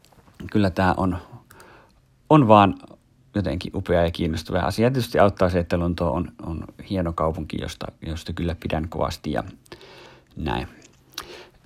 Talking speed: 135 wpm